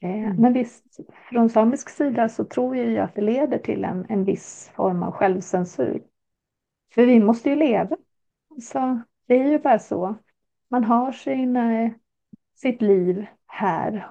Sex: female